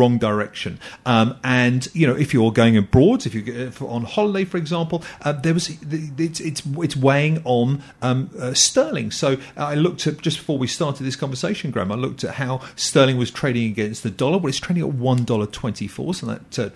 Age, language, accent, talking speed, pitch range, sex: 40-59, English, British, 195 wpm, 115-145 Hz, male